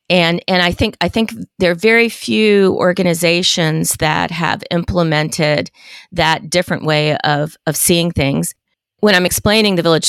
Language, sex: English, female